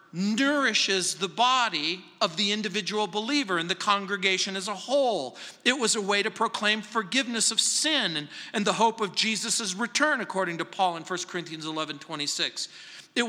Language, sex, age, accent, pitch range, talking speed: English, male, 50-69, American, 195-240 Hz, 180 wpm